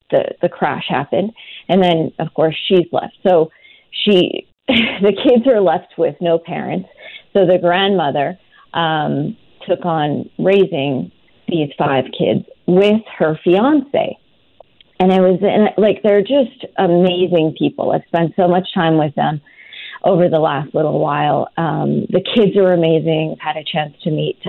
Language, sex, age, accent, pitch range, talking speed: English, female, 40-59, American, 155-200 Hz, 150 wpm